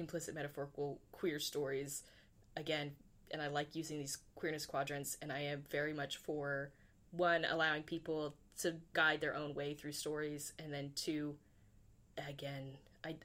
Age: 20-39